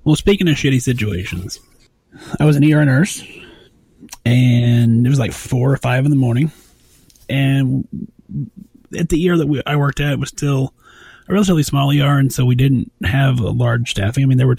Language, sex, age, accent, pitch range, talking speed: English, male, 30-49, American, 120-150 Hz, 200 wpm